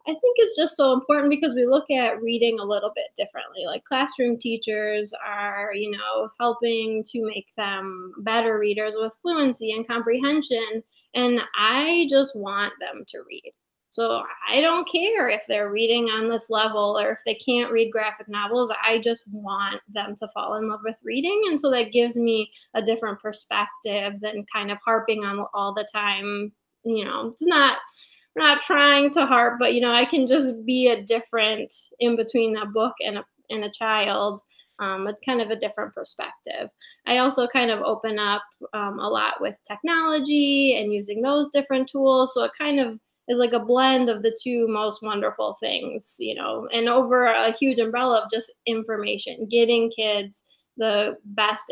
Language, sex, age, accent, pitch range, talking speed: English, female, 10-29, American, 210-255 Hz, 185 wpm